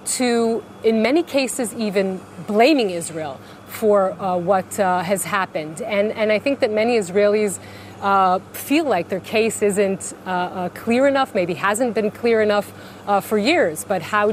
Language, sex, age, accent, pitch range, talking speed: English, female, 30-49, American, 185-215 Hz, 165 wpm